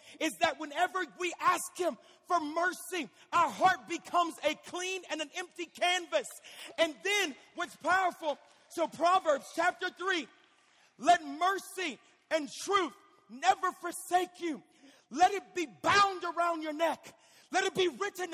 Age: 40-59